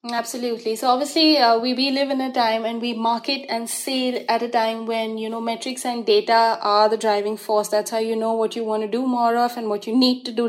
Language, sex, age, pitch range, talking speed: English, female, 20-39, 220-260 Hz, 255 wpm